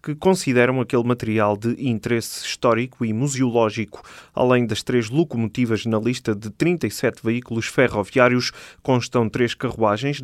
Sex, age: male, 20-39